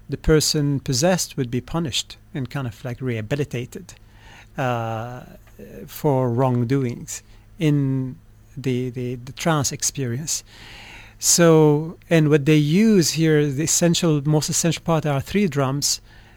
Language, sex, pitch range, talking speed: English, male, 115-150 Hz, 125 wpm